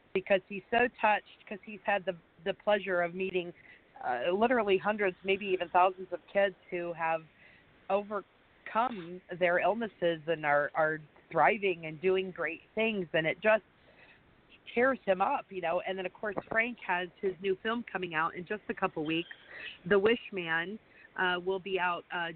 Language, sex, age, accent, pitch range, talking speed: English, female, 40-59, American, 175-210 Hz, 175 wpm